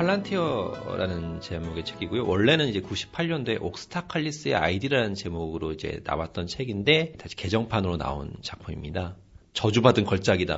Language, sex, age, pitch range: Korean, male, 40-59, 95-150 Hz